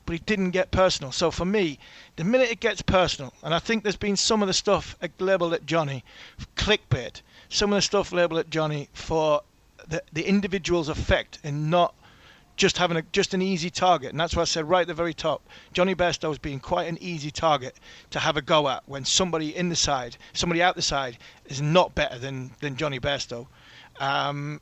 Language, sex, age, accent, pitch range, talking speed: English, male, 40-59, British, 145-180 Hz, 210 wpm